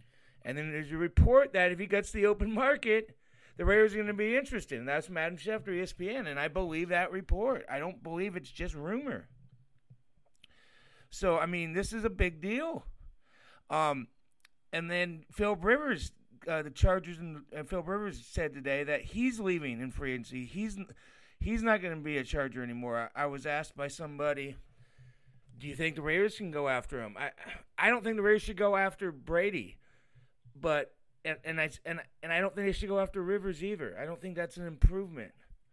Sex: male